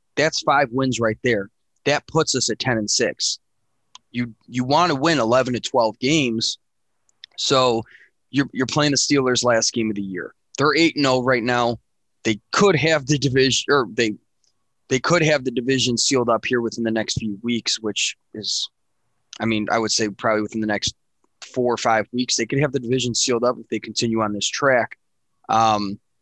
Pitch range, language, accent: 115-145 Hz, English, American